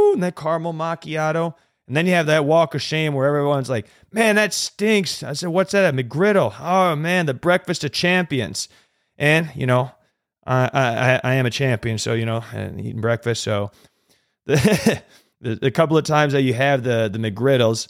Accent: American